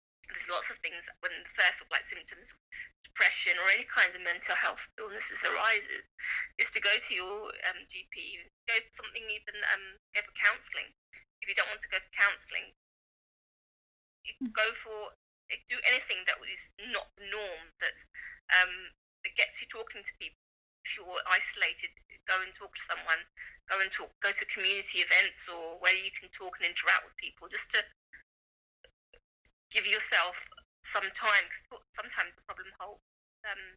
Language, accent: English, British